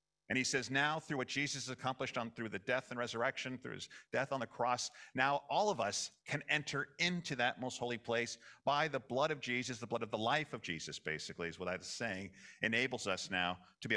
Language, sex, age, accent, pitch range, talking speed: English, male, 50-69, American, 105-135 Hz, 235 wpm